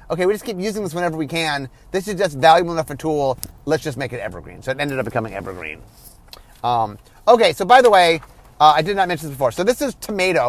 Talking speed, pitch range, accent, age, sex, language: 250 wpm, 135-180 Hz, American, 30-49, male, English